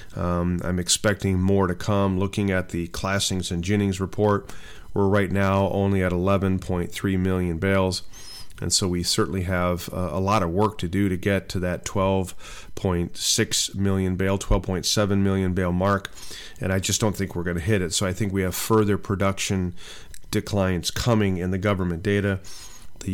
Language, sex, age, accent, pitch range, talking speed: English, male, 40-59, American, 90-105 Hz, 175 wpm